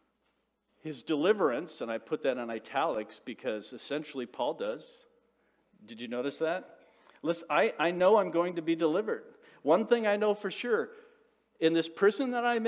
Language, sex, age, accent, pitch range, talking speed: English, male, 50-69, American, 140-220 Hz, 170 wpm